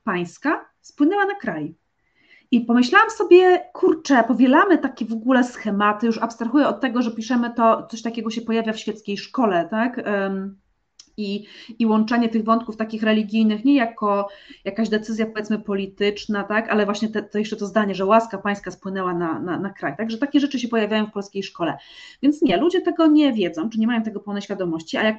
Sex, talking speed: female, 190 wpm